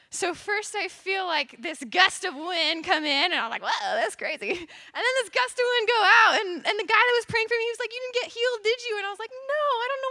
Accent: American